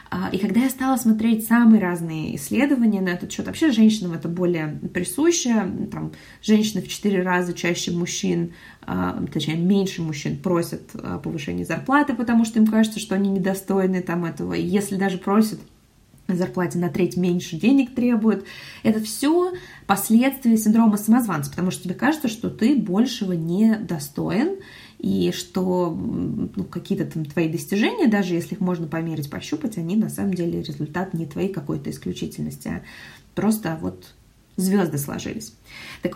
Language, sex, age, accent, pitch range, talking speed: Russian, female, 20-39, native, 175-230 Hz, 150 wpm